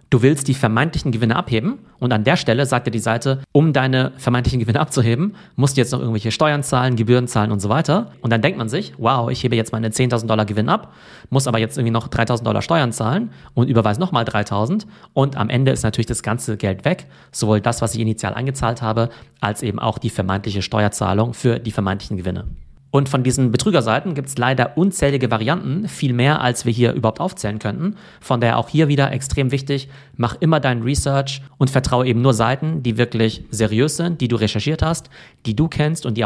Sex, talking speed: male, 215 wpm